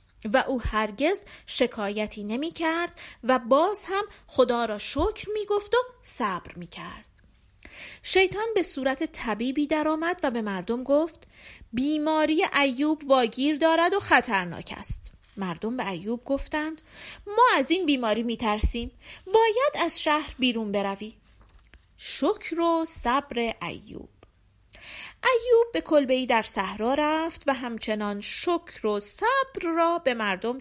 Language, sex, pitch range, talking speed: Persian, female, 215-335 Hz, 125 wpm